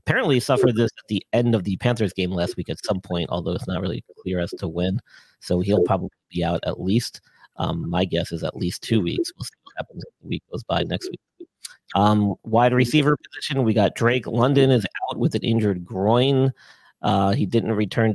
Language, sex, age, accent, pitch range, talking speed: English, male, 40-59, American, 100-125 Hz, 220 wpm